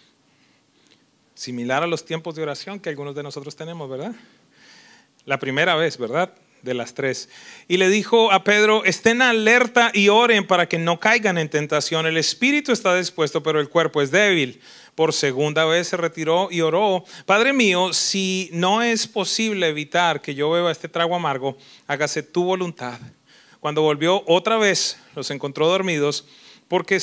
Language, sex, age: English, male, 40-59